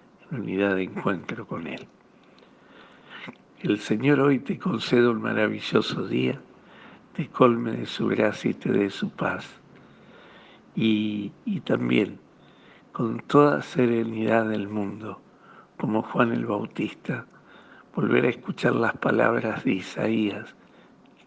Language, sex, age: Spanish, male, 60-79